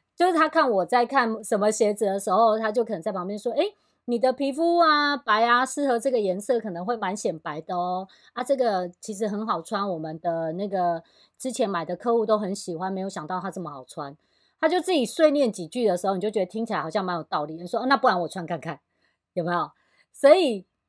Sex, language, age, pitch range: female, Chinese, 30-49, 180-245 Hz